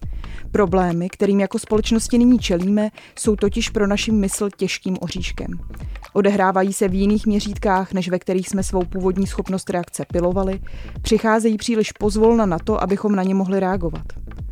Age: 20-39